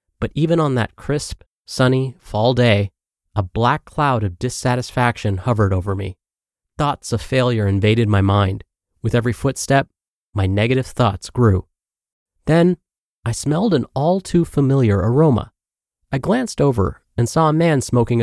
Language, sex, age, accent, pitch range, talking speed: English, male, 30-49, American, 105-145 Hz, 140 wpm